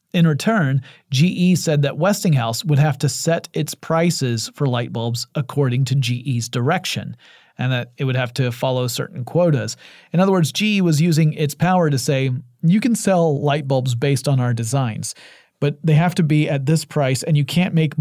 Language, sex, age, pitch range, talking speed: English, male, 40-59, 130-165 Hz, 195 wpm